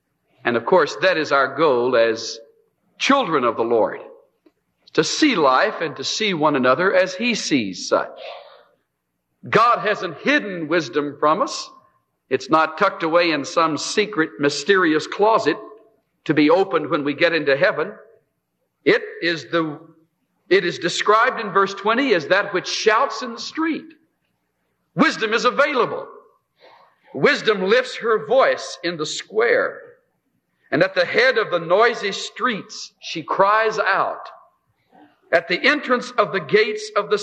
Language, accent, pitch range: English, American, 165-275 Hz